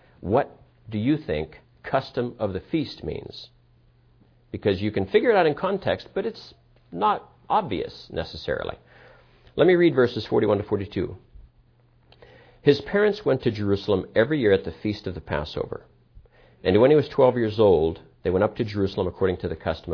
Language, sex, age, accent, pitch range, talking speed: English, male, 50-69, American, 105-145 Hz, 175 wpm